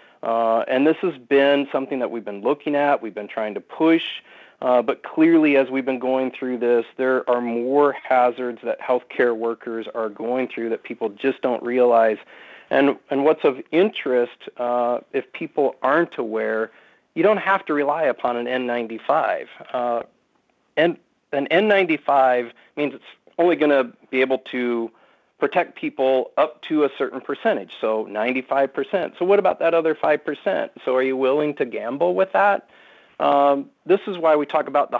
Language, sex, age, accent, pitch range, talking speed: English, male, 40-59, American, 120-145 Hz, 175 wpm